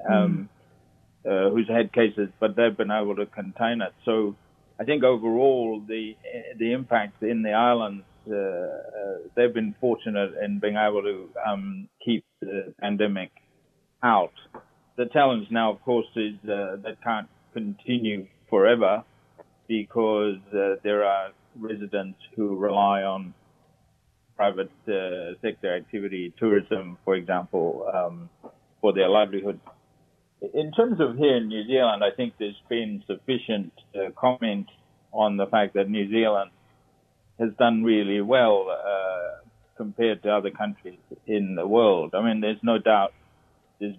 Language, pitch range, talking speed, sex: English, 100-115 Hz, 140 wpm, male